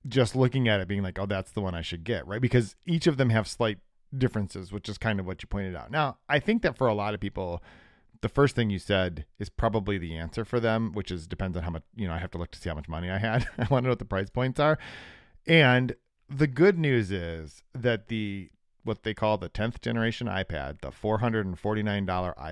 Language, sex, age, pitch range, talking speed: English, male, 40-59, 90-120 Hz, 250 wpm